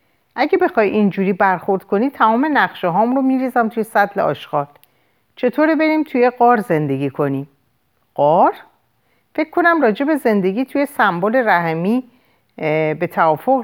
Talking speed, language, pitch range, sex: 130 wpm, Persian, 155-245 Hz, female